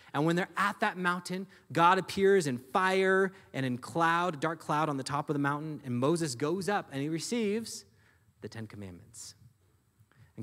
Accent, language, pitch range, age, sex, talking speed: American, English, 110-165 Hz, 30-49, male, 185 wpm